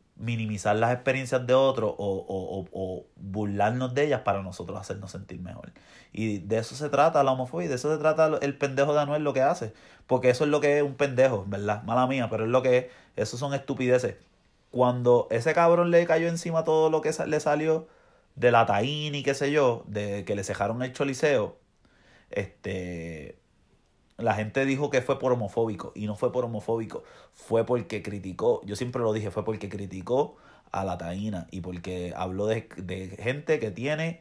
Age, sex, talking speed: 30-49, male, 200 wpm